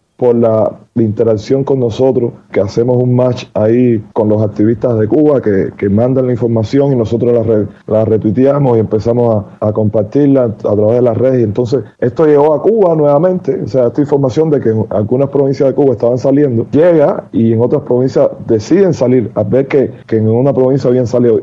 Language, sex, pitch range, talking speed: Spanish, male, 115-135 Hz, 205 wpm